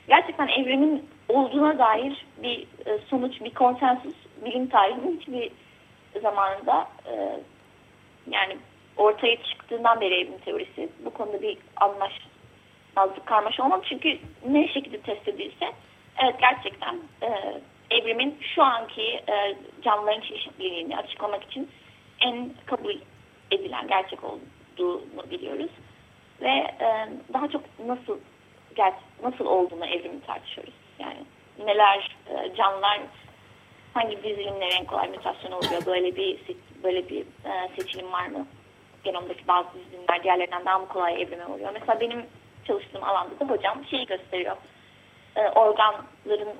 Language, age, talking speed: Turkish, 30-49, 110 wpm